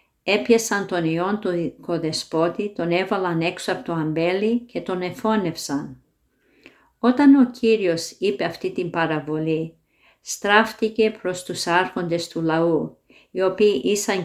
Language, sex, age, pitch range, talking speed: Greek, female, 50-69, 165-215 Hz, 125 wpm